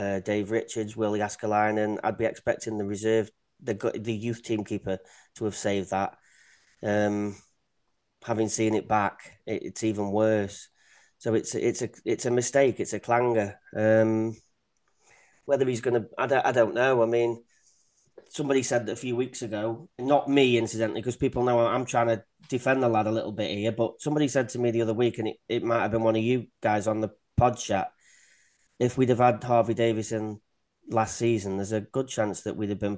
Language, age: English, 30-49